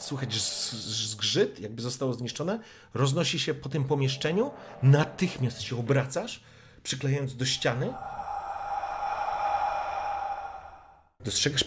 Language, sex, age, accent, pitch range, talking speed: Polish, male, 40-59, native, 95-140 Hz, 85 wpm